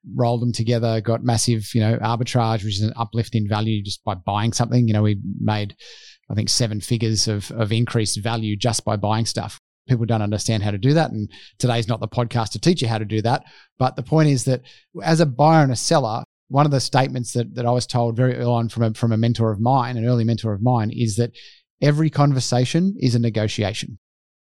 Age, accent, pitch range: 30-49, Australian, 115-140 Hz